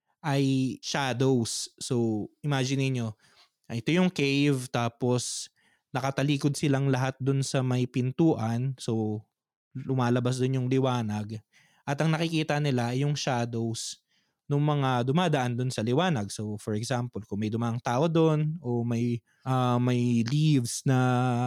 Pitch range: 120-145 Hz